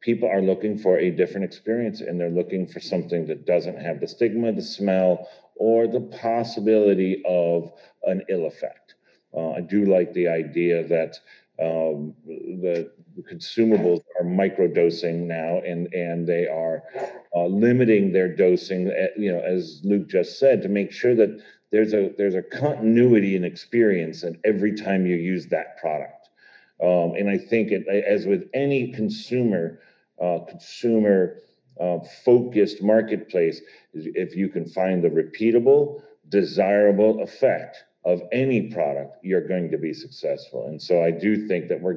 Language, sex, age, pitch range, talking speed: English, male, 40-59, 85-110 Hz, 155 wpm